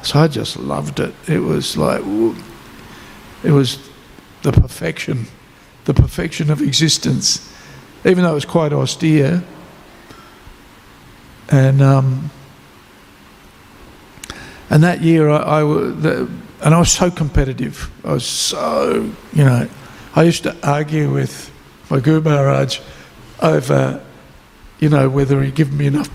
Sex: male